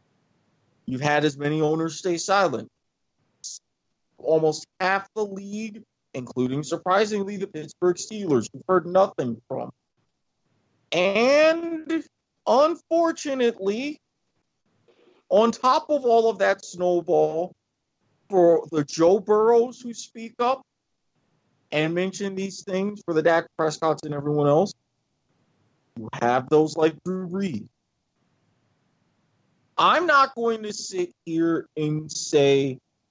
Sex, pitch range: male, 155-200 Hz